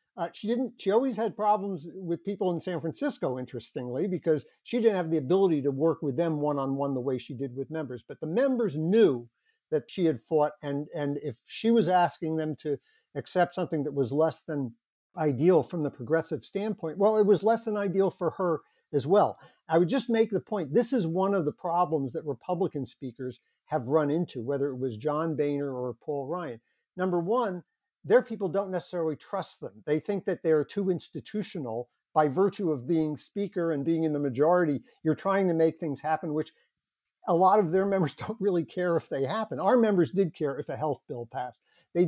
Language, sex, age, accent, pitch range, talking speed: English, male, 50-69, American, 145-195 Hz, 205 wpm